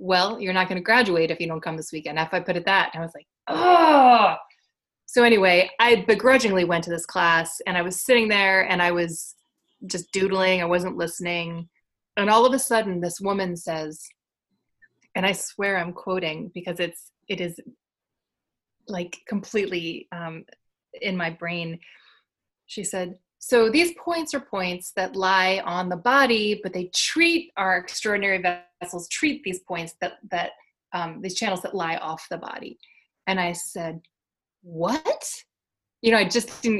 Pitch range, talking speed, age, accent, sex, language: 175-235 Hz, 170 wpm, 20-39, American, female, English